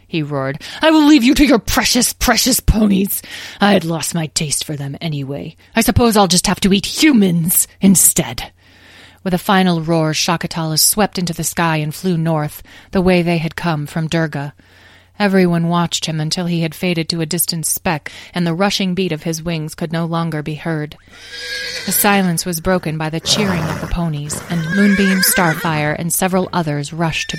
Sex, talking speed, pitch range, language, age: female, 195 wpm, 155-190 Hz, English, 30-49